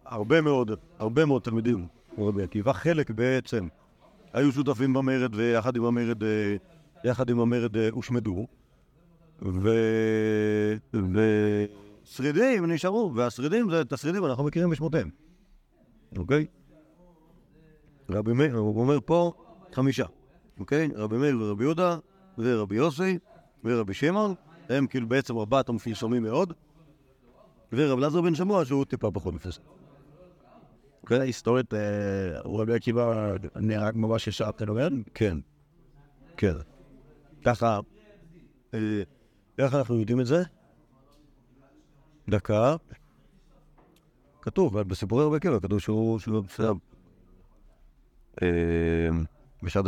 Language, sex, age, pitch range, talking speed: Hebrew, male, 50-69, 110-150 Hz, 95 wpm